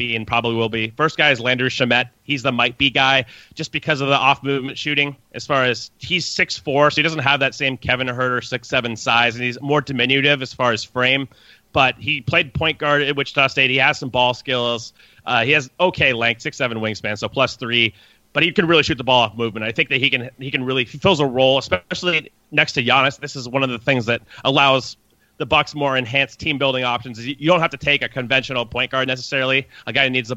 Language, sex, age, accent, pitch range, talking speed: English, male, 30-49, American, 120-140 Hz, 240 wpm